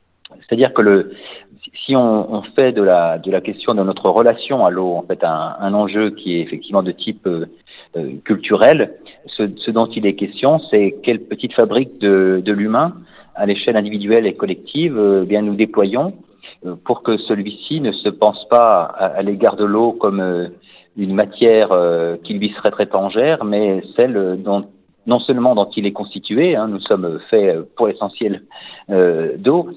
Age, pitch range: 40-59, 95-110 Hz